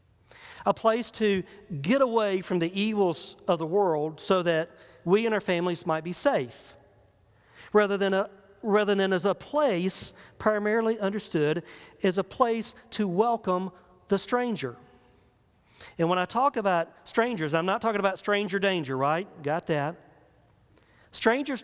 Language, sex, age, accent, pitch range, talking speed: English, male, 40-59, American, 130-195 Hz, 145 wpm